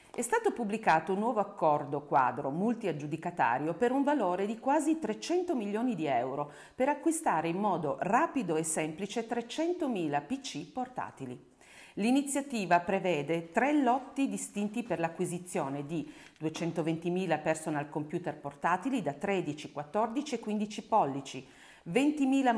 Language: Italian